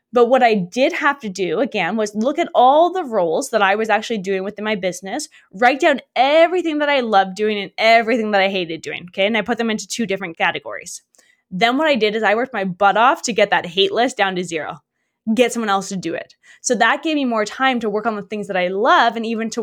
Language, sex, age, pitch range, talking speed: English, female, 20-39, 195-255 Hz, 260 wpm